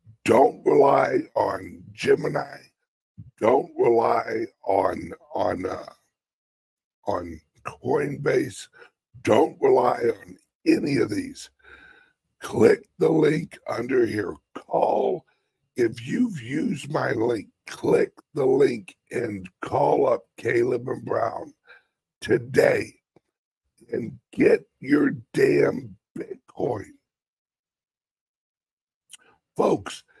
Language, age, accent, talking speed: English, 60-79, American, 85 wpm